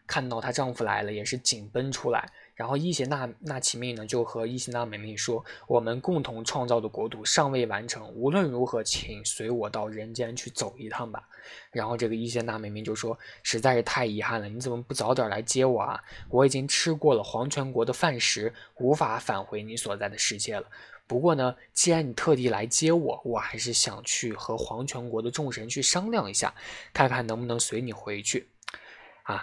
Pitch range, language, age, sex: 110-135 Hz, Chinese, 20-39, male